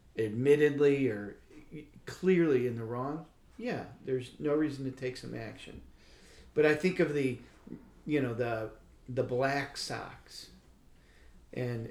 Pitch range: 115-145 Hz